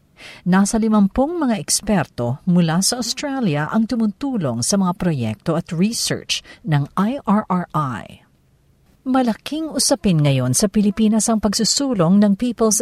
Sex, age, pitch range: female, 50-69, 165-220 Hz